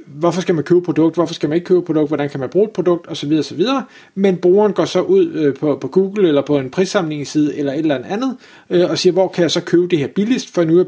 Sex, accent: male, native